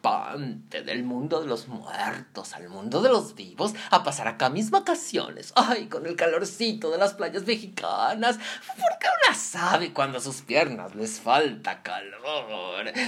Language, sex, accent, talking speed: Spanish, male, Mexican, 150 wpm